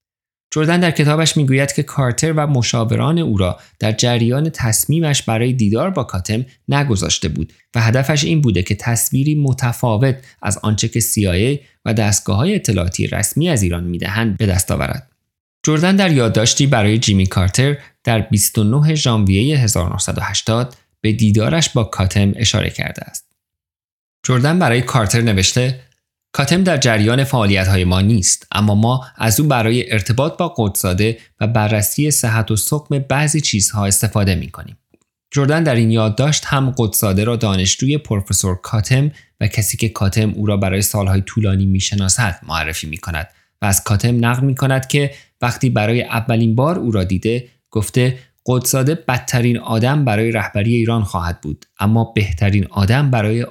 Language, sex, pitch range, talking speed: Persian, male, 100-130 Hz, 150 wpm